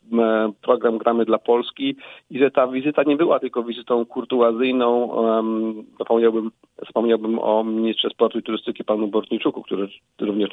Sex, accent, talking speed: male, native, 130 wpm